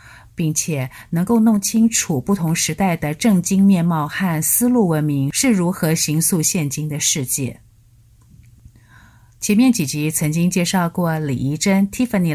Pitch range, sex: 125-180 Hz, female